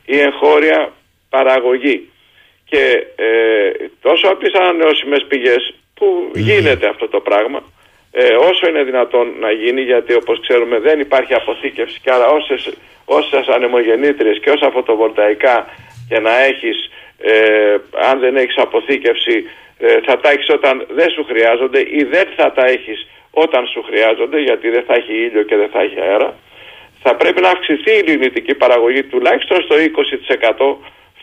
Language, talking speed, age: Greek, 150 wpm, 50-69